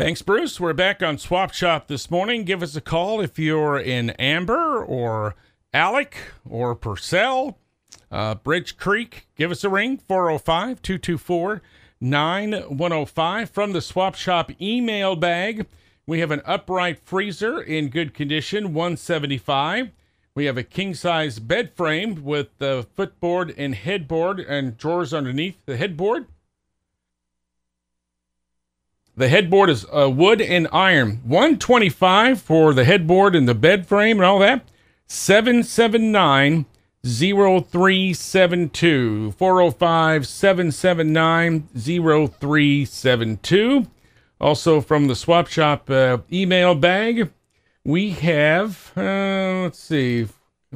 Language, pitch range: English, 135-190 Hz